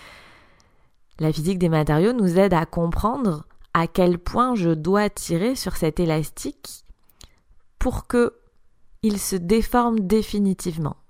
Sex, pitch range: female, 155-200 Hz